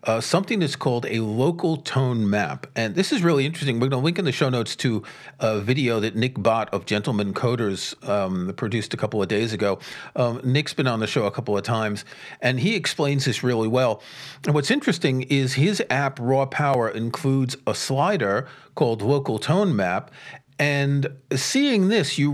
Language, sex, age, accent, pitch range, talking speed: English, male, 40-59, American, 120-155 Hz, 195 wpm